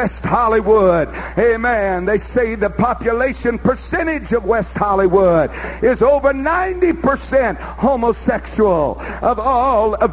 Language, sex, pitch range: English, male, 205-255 Hz